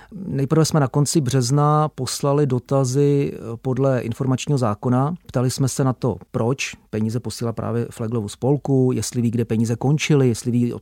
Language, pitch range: Czech, 120-140 Hz